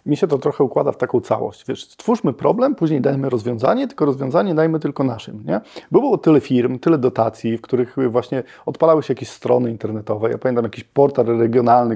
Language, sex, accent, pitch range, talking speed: Polish, male, native, 120-160 Hz, 195 wpm